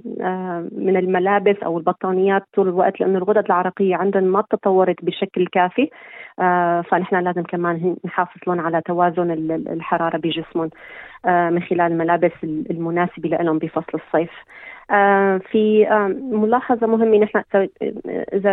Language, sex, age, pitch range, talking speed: Arabic, female, 30-49, 175-200 Hz, 110 wpm